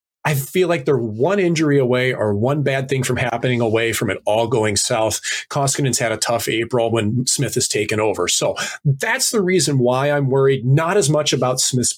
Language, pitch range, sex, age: English, 125-155 Hz, male, 30-49